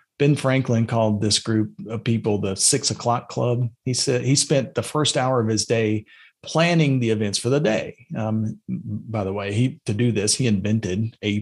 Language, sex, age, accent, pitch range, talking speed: English, male, 40-59, American, 110-130 Hz, 200 wpm